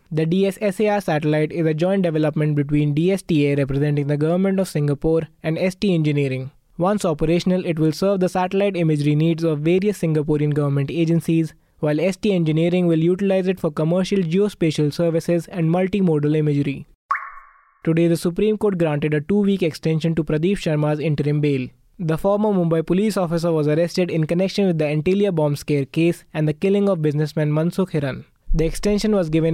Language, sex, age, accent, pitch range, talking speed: English, male, 20-39, Indian, 150-180 Hz, 170 wpm